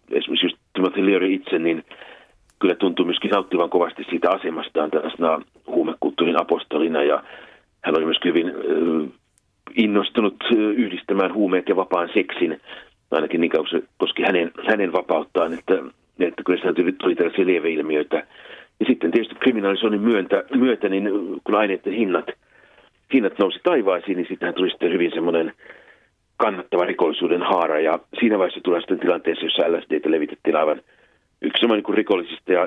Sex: male